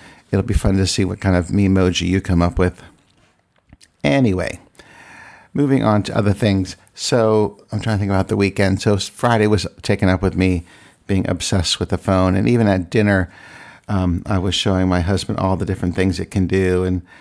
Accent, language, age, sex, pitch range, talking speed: American, English, 50-69, male, 90-105 Hz, 200 wpm